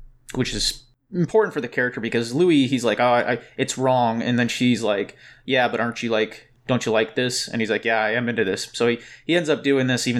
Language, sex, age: English, male, 30-49